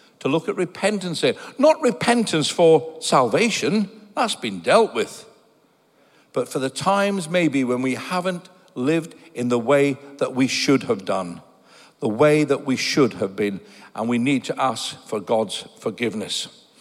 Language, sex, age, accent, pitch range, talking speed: English, male, 60-79, British, 150-230 Hz, 160 wpm